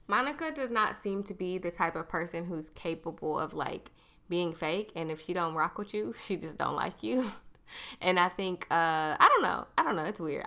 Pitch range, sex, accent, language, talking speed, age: 160-200 Hz, female, American, English, 230 wpm, 20-39